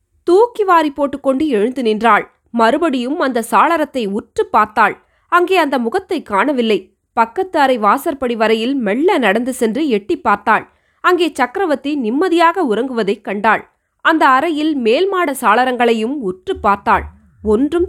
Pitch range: 225-325 Hz